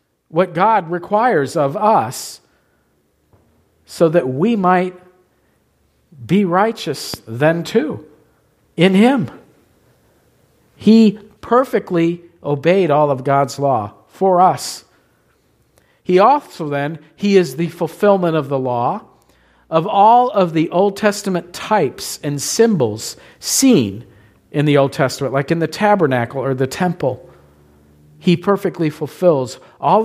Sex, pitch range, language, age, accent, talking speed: male, 135-195 Hz, English, 50-69, American, 120 wpm